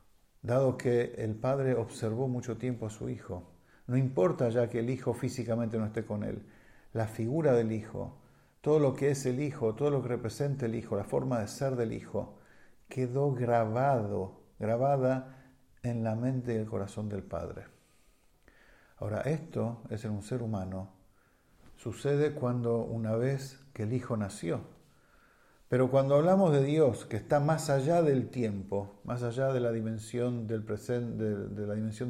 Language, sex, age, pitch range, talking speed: English, male, 50-69, 110-135 Hz, 170 wpm